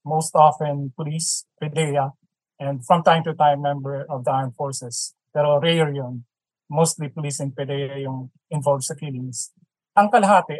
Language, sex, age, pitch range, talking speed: Filipino, male, 20-39, 145-170 Hz, 155 wpm